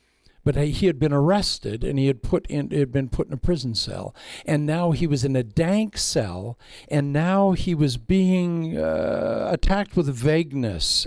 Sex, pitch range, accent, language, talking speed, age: male, 115-160 Hz, American, English, 190 wpm, 60-79